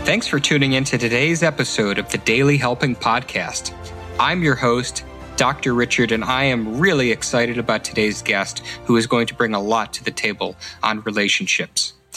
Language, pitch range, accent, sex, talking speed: English, 115-145 Hz, American, male, 180 wpm